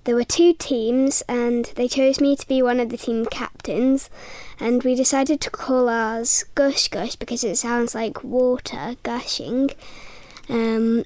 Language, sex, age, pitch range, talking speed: English, female, 20-39, 235-265 Hz, 165 wpm